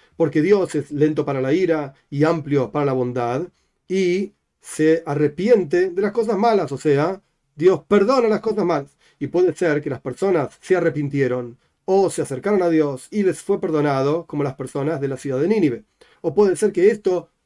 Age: 40-59